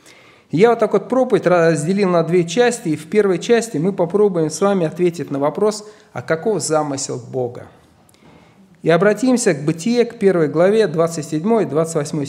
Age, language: 40-59, Russian